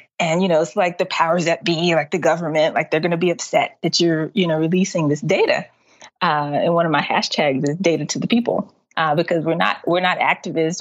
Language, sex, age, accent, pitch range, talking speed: English, female, 20-39, American, 155-180 Hz, 240 wpm